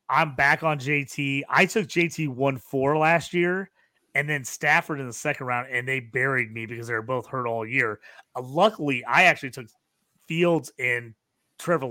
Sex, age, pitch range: male, 30-49, 125-160 Hz